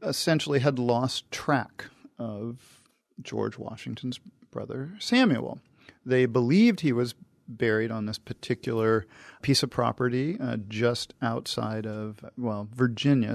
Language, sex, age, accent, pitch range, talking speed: English, male, 40-59, American, 115-135 Hz, 115 wpm